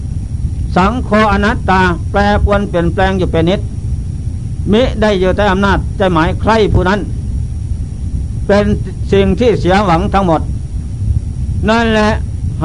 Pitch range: 90-110 Hz